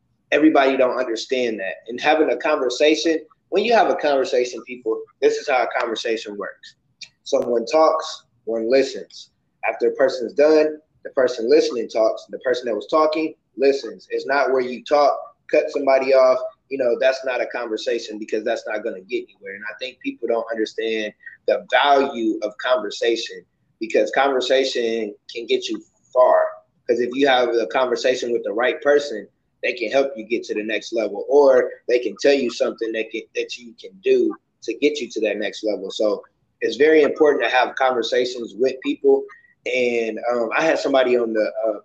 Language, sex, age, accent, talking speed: English, male, 20-39, American, 185 wpm